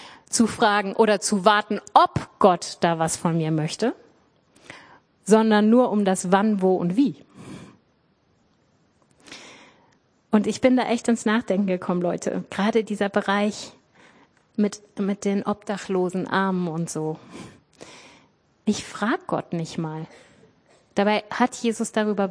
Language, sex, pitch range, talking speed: German, female, 190-245 Hz, 130 wpm